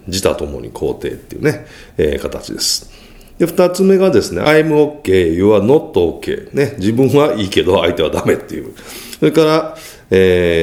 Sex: male